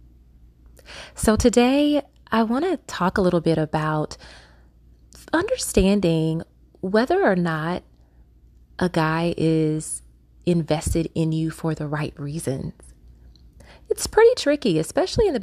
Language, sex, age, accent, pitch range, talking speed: English, female, 30-49, American, 145-180 Hz, 115 wpm